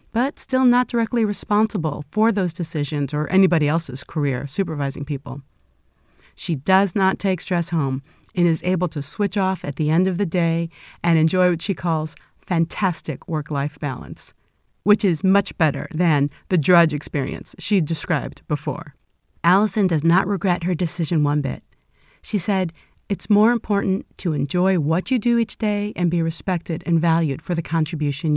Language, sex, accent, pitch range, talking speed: English, female, American, 155-200 Hz, 165 wpm